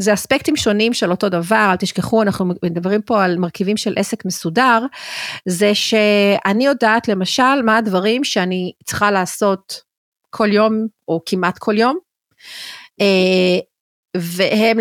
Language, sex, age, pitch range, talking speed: Hebrew, female, 40-59, 185-225 Hz, 130 wpm